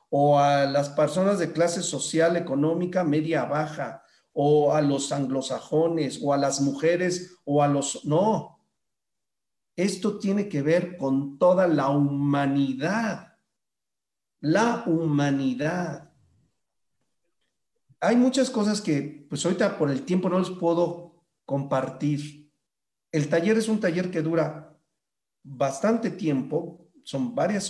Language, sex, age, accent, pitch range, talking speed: Spanish, male, 40-59, Mexican, 145-180 Hz, 120 wpm